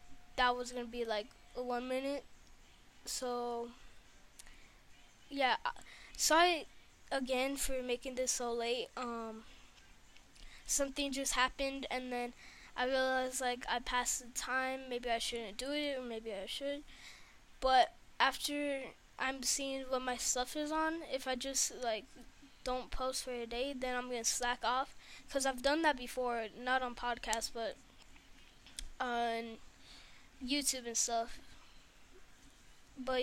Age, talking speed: 10-29, 140 wpm